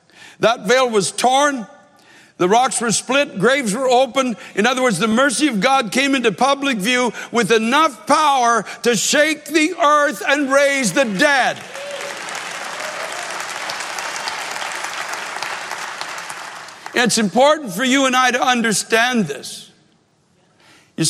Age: 60-79